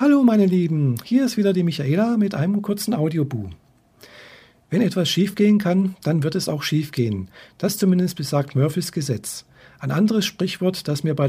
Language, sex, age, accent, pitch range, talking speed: German, male, 50-69, German, 140-185 Hz, 180 wpm